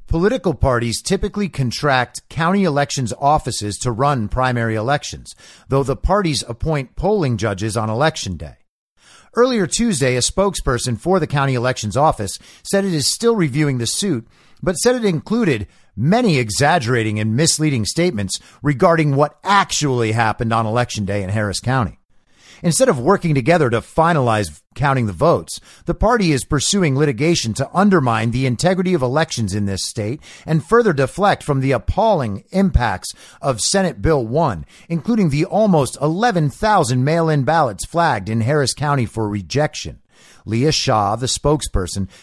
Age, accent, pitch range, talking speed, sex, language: 50-69, American, 115-170 Hz, 150 wpm, male, English